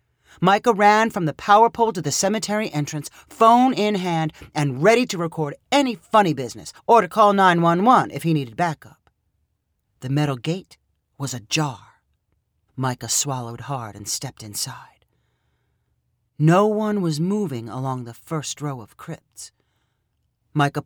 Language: English